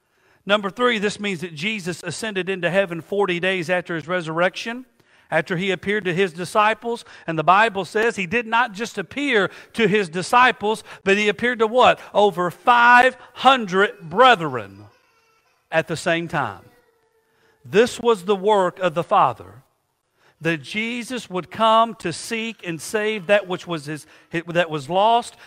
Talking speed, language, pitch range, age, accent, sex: 155 wpm, English, 155-215 Hz, 50-69, American, male